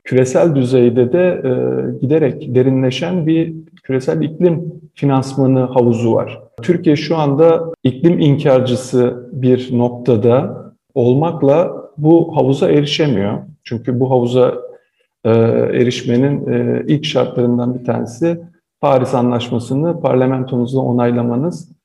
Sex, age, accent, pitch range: male, 50-69, native, 120-150 Hz